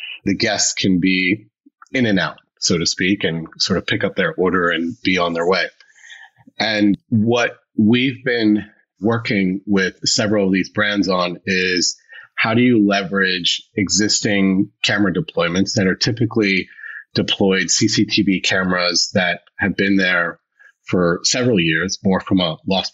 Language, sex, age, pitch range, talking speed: English, male, 30-49, 95-110 Hz, 150 wpm